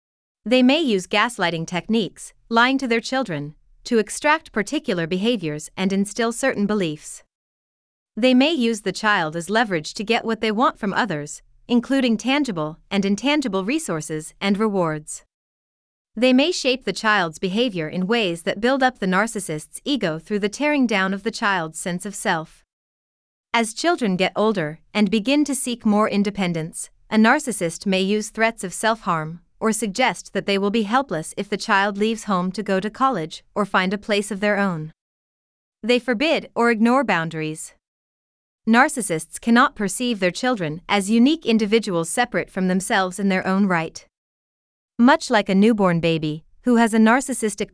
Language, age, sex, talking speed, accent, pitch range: English, 30-49, female, 165 wpm, American, 180-235 Hz